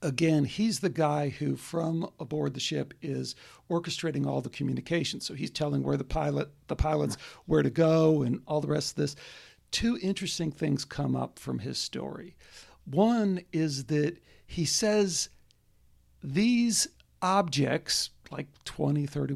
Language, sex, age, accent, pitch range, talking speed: English, male, 60-79, American, 140-185 Hz, 150 wpm